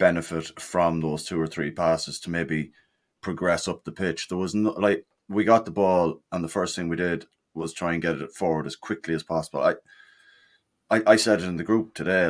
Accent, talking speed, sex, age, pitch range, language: Irish, 225 wpm, male, 30-49, 80-105 Hz, English